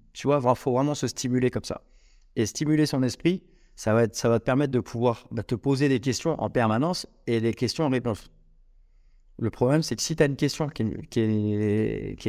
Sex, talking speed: male, 230 wpm